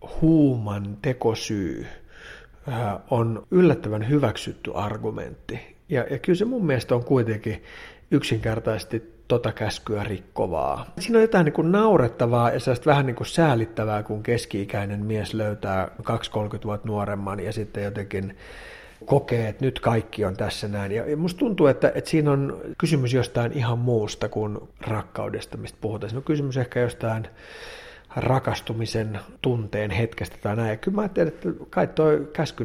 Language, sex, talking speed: Finnish, male, 145 wpm